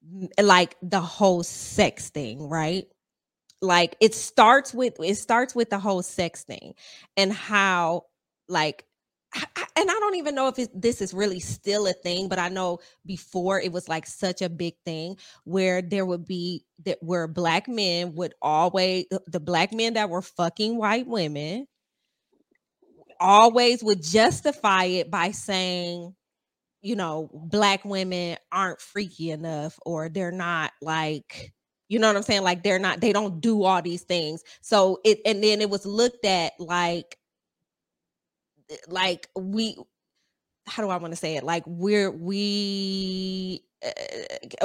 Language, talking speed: English, 150 wpm